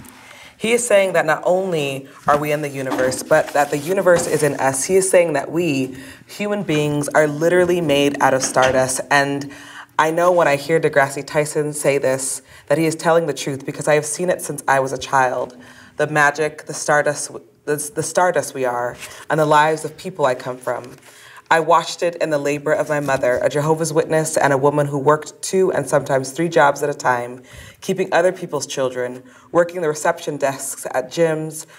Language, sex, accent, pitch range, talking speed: English, female, American, 135-160 Hz, 200 wpm